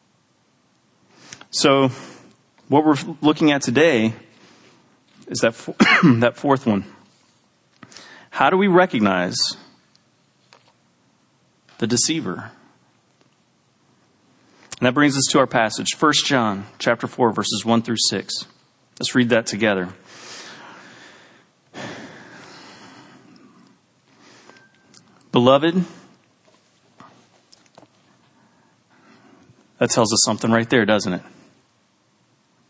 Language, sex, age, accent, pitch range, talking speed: English, male, 40-59, American, 110-135 Hz, 85 wpm